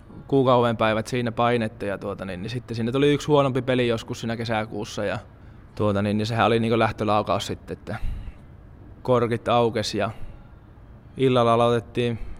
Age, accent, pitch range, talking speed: 20-39, native, 105-120 Hz, 145 wpm